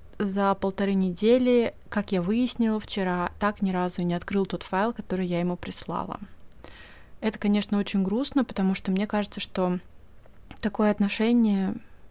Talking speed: 150 wpm